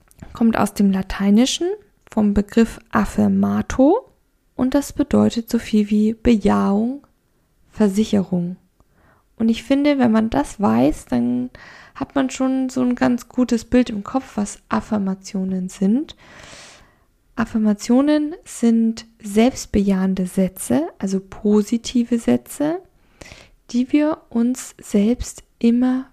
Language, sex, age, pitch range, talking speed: German, female, 10-29, 200-245 Hz, 110 wpm